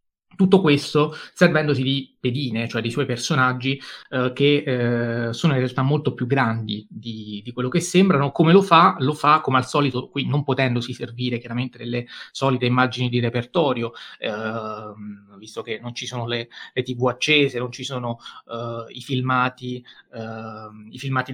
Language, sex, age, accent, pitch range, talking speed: Italian, male, 20-39, native, 120-145 Hz, 165 wpm